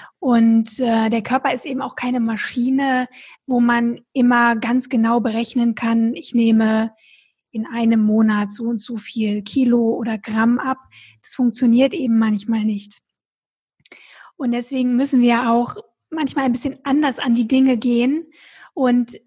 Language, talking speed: German, 150 wpm